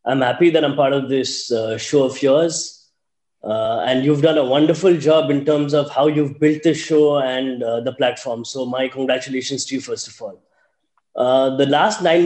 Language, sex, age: English, male, 20-39